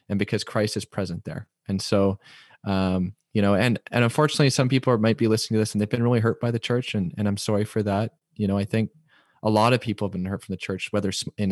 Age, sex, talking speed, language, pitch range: 20-39, male, 270 wpm, English, 100-115 Hz